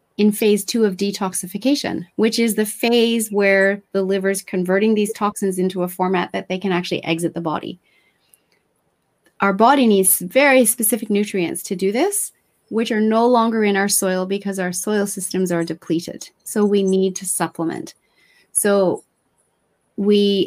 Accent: American